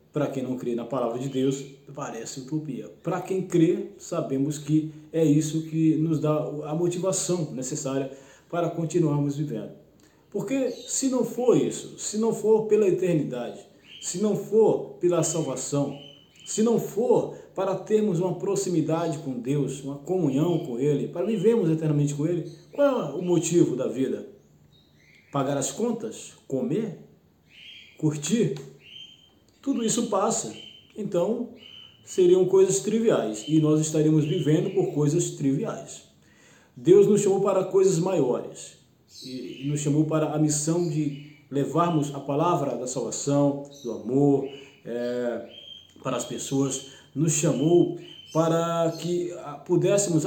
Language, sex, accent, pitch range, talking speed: Portuguese, male, Brazilian, 140-185 Hz, 130 wpm